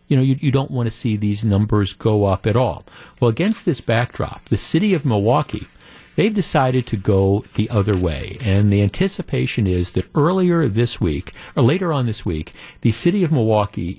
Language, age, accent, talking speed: English, 50-69, American, 195 wpm